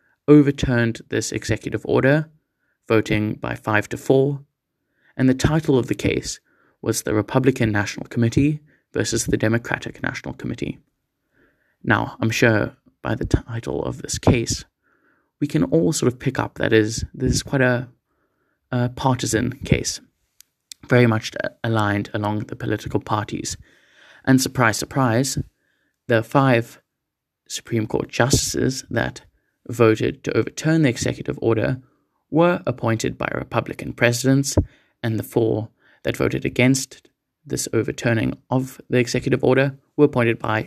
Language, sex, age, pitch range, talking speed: English, male, 20-39, 110-135 Hz, 135 wpm